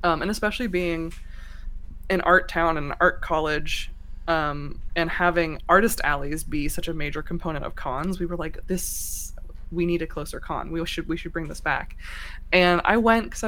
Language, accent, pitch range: English, American, 150-180 Hz